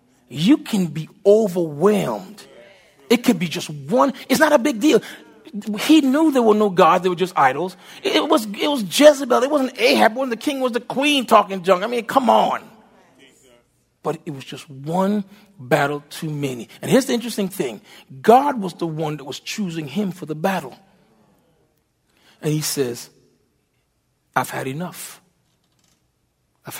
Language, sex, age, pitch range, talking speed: English, male, 40-59, 145-225 Hz, 165 wpm